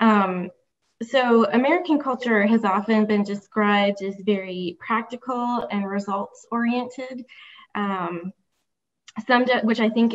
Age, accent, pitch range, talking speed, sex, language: 20-39, American, 195-220 Hz, 110 wpm, female, English